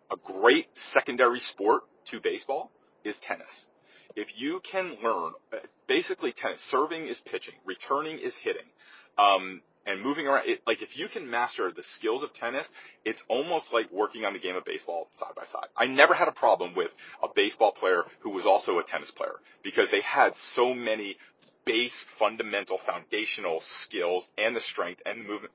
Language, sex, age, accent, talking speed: English, male, 40-59, American, 175 wpm